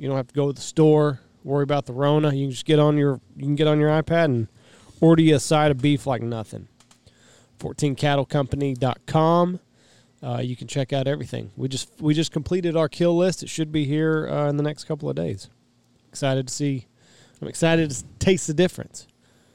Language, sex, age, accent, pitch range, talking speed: English, male, 30-49, American, 135-165 Hz, 210 wpm